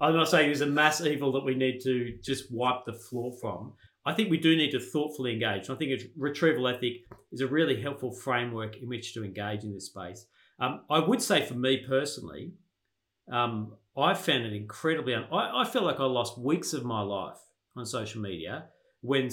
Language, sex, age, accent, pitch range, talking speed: English, male, 40-59, Australian, 115-150 Hz, 205 wpm